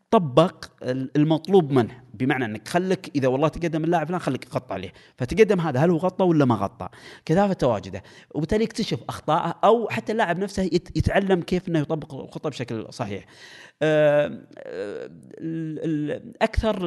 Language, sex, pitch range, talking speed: Arabic, male, 125-175 Hz, 135 wpm